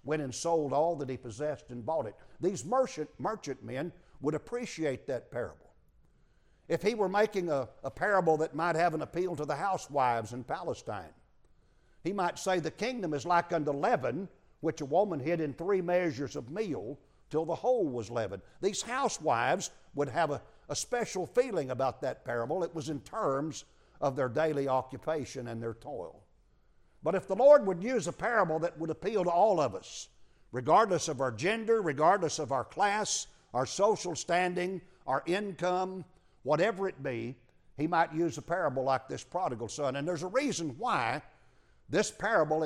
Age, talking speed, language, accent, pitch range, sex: 60-79, 180 wpm, English, American, 145-185 Hz, male